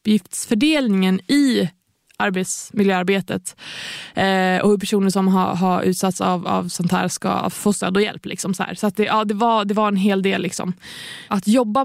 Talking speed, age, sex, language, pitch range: 190 wpm, 20-39, female, Swedish, 185-225 Hz